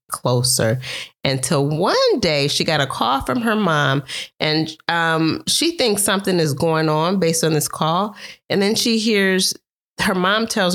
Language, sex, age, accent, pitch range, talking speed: English, female, 30-49, American, 135-195 Hz, 165 wpm